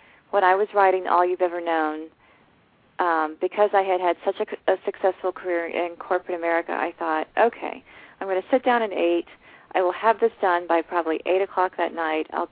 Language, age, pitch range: English, 40-59, 170-195 Hz